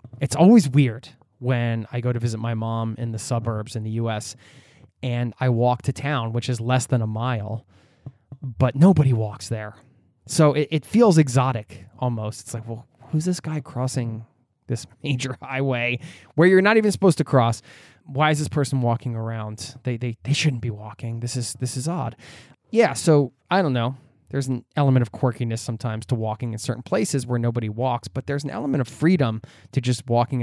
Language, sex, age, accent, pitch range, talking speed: English, male, 20-39, American, 115-140 Hz, 195 wpm